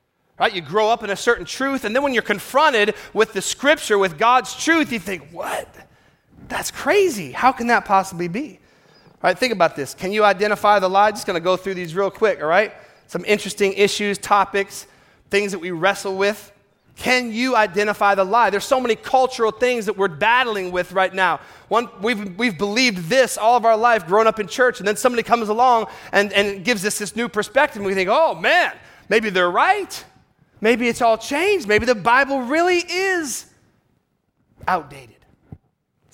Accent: American